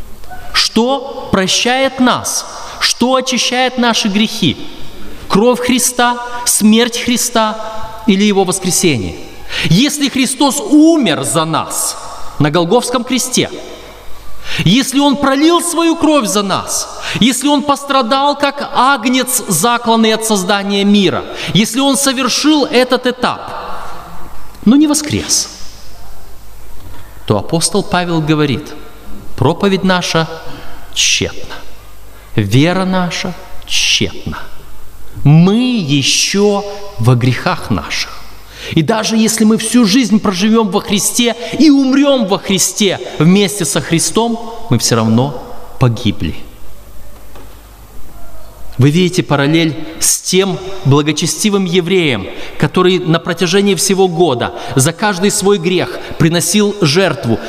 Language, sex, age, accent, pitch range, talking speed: Russian, male, 30-49, native, 145-235 Hz, 100 wpm